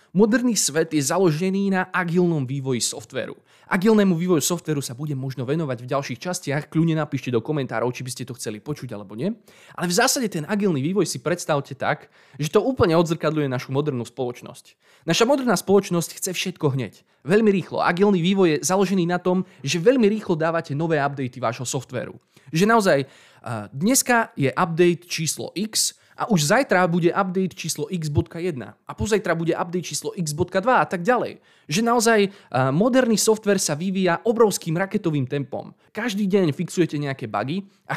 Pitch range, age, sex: 140-190 Hz, 20-39, male